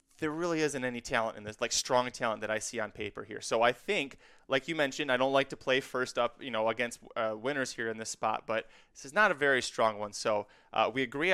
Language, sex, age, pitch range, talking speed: English, male, 20-39, 120-155 Hz, 265 wpm